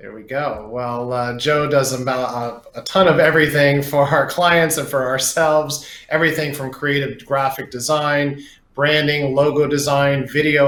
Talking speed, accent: 155 wpm, American